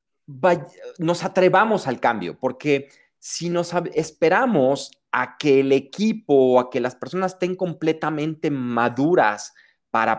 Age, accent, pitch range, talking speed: 30-49, Mexican, 125-160 Hz, 125 wpm